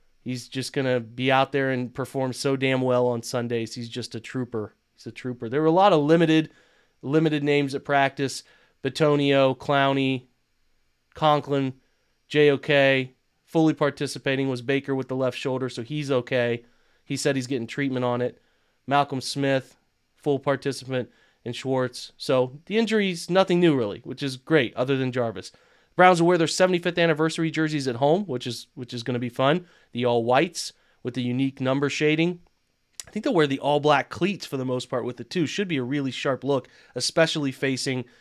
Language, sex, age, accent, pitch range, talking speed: English, male, 30-49, American, 125-150 Hz, 185 wpm